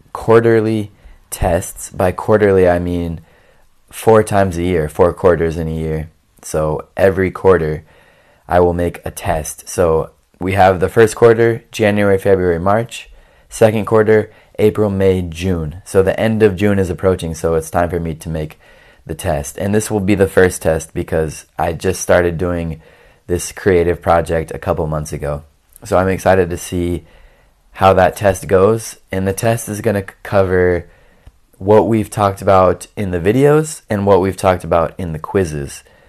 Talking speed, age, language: 170 wpm, 20-39, Italian